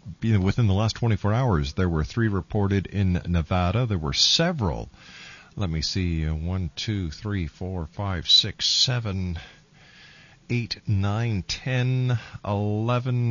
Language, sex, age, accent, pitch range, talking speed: English, male, 50-69, American, 95-130 Hz, 125 wpm